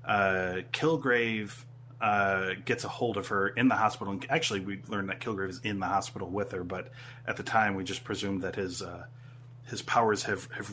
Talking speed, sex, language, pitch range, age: 205 wpm, male, English, 100-125 Hz, 30-49